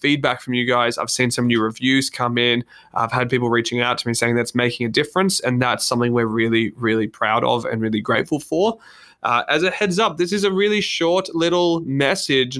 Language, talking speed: English, 225 wpm